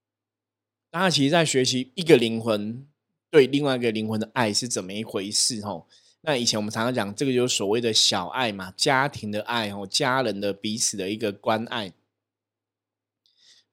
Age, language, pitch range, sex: 20-39, Chinese, 105-130 Hz, male